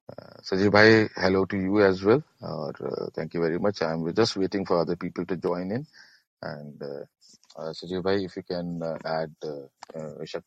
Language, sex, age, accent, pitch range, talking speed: Hindi, male, 40-59, native, 85-115 Hz, 200 wpm